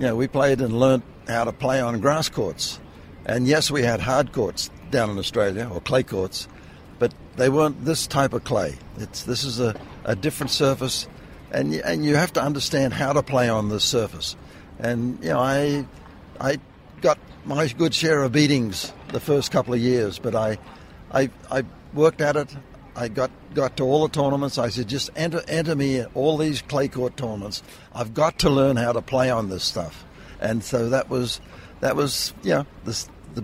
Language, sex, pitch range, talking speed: English, male, 115-140 Hz, 205 wpm